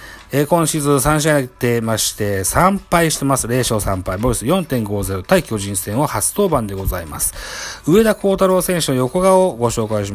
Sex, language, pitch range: male, Japanese, 105-155 Hz